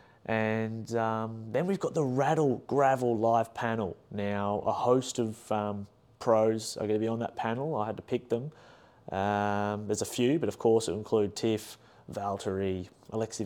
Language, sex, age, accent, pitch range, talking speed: English, male, 30-49, Australian, 105-120 Hz, 180 wpm